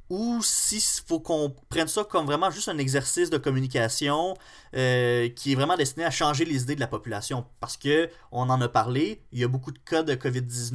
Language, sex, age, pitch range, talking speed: French, male, 20-39, 120-150 Hz, 210 wpm